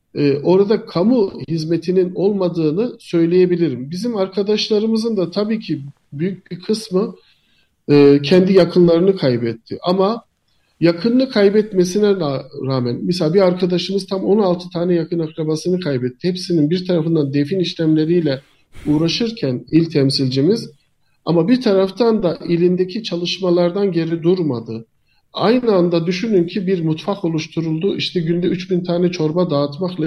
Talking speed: 120 wpm